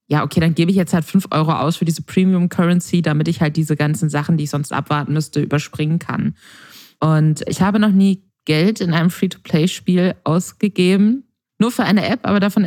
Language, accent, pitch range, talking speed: German, German, 155-185 Hz, 205 wpm